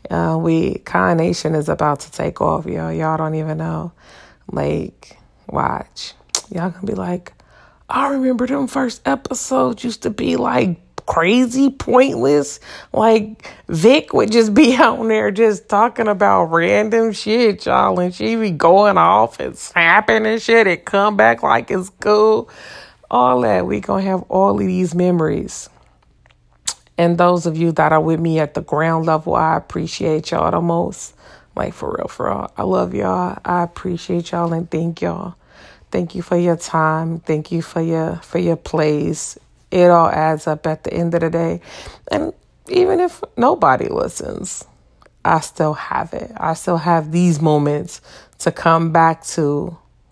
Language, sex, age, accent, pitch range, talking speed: English, female, 30-49, American, 155-210 Hz, 165 wpm